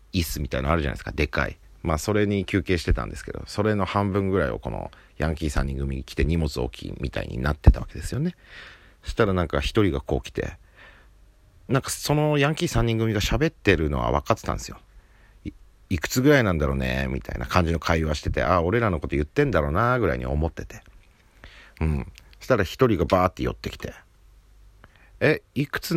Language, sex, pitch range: Japanese, male, 75-105 Hz